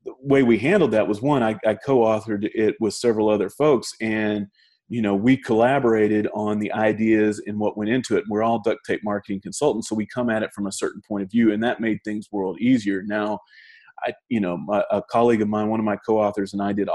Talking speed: 235 wpm